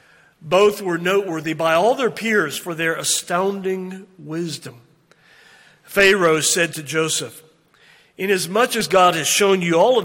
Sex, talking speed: male, 135 wpm